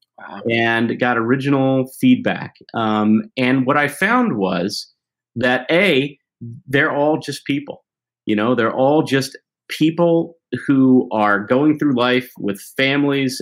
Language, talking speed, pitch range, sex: English, 130 wpm, 100-140 Hz, male